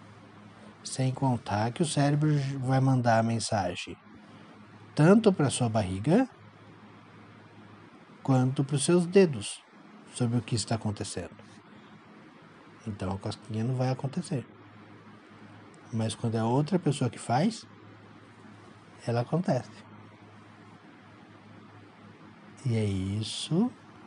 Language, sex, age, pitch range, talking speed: Portuguese, male, 60-79, 105-135 Hz, 105 wpm